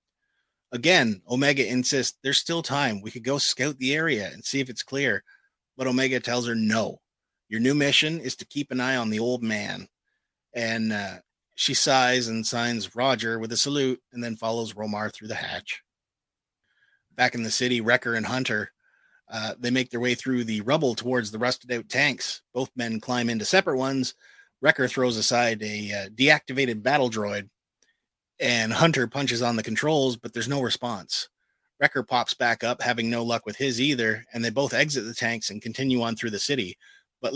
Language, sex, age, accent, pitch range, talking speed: English, male, 30-49, American, 110-130 Hz, 190 wpm